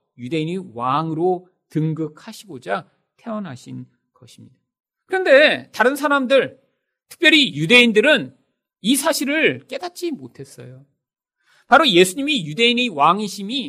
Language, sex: Korean, male